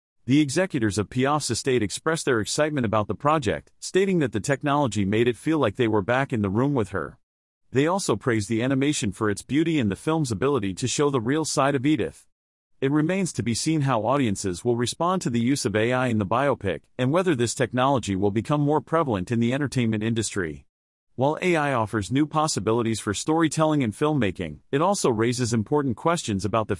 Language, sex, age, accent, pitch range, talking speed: English, male, 40-59, American, 110-150 Hz, 205 wpm